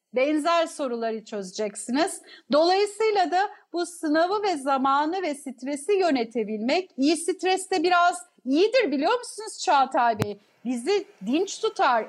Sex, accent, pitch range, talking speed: female, native, 275-360 Hz, 120 wpm